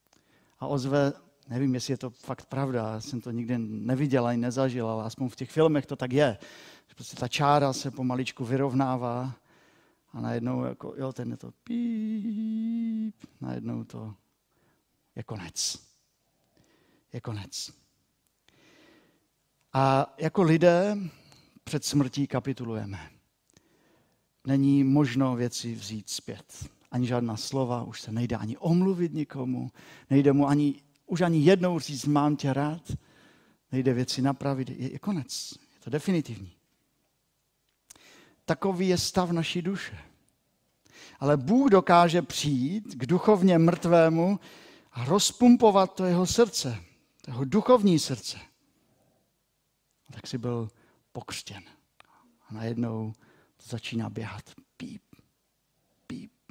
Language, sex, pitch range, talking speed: Czech, male, 120-170 Hz, 120 wpm